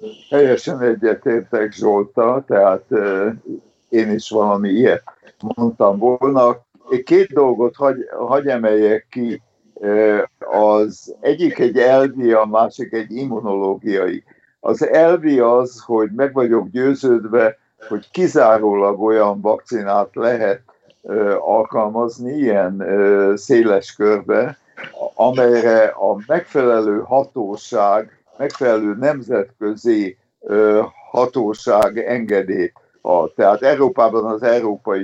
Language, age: Hungarian, 60-79